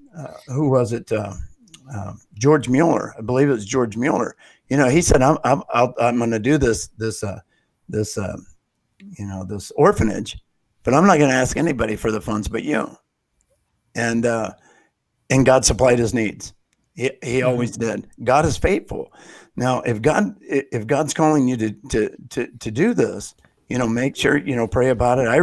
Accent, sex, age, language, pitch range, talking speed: American, male, 50-69, English, 110-130 Hz, 195 wpm